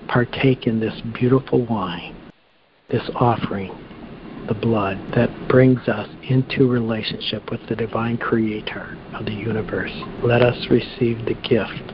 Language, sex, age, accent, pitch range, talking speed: English, male, 60-79, American, 115-130 Hz, 130 wpm